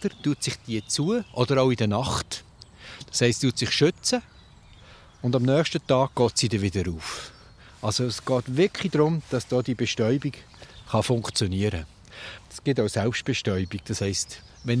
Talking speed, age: 160 wpm, 50-69